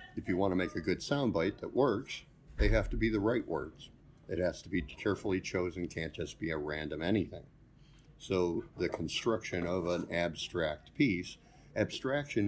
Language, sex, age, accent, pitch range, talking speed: English, male, 50-69, American, 85-100 Hz, 180 wpm